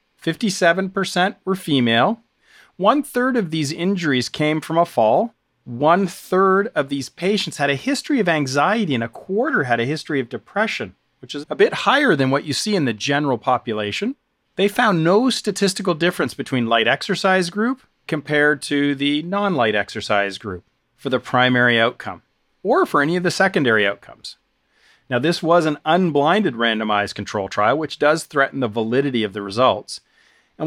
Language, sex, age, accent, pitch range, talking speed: English, male, 40-59, American, 125-180 Hz, 160 wpm